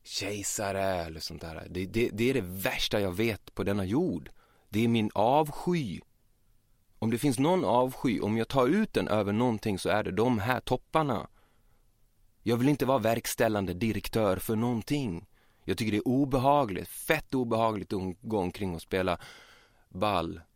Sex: male